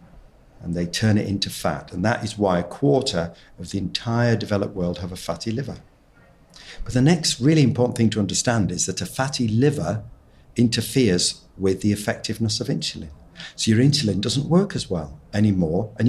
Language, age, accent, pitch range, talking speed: English, 50-69, British, 90-125 Hz, 185 wpm